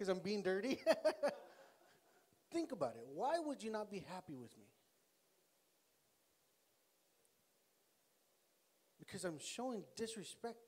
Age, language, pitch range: 40-59, English, 150-225 Hz